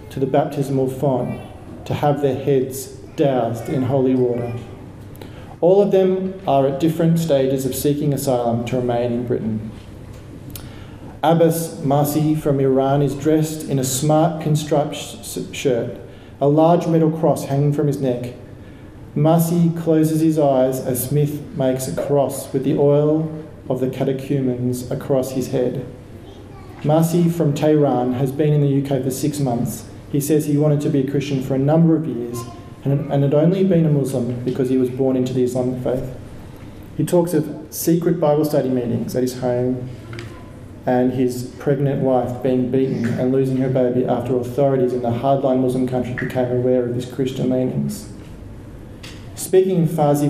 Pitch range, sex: 125-150 Hz, male